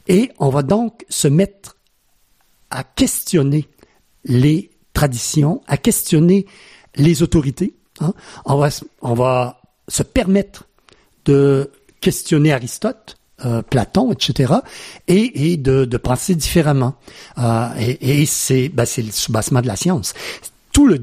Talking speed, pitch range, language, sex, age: 125 wpm, 130-170 Hz, French, male, 60-79